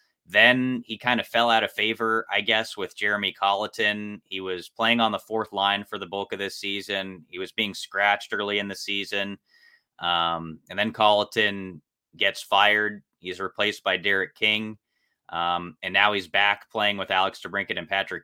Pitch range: 90-105 Hz